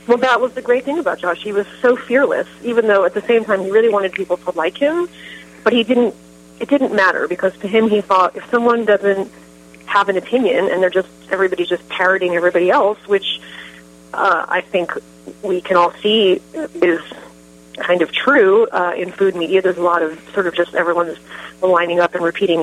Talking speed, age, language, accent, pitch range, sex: 205 wpm, 30-49, English, American, 175-210 Hz, female